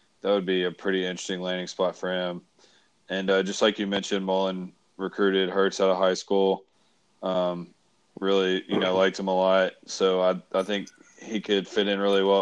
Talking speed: 200 wpm